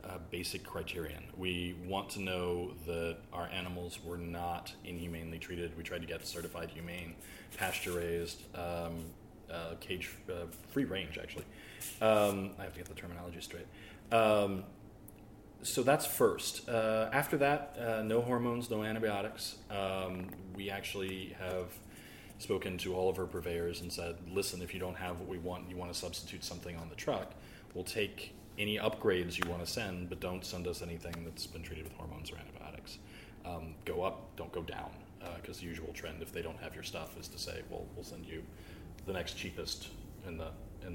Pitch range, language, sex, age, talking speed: 85-105 Hz, English, male, 30-49, 185 wpm